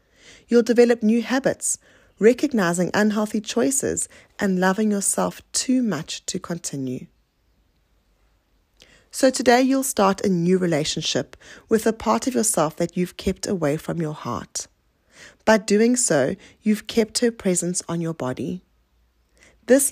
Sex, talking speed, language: female, 135 wpm, English